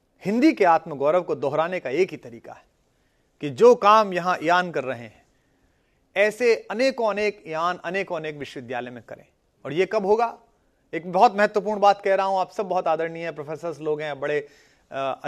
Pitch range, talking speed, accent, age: 145-205 Hz, 200 wpm, Indian, 40-59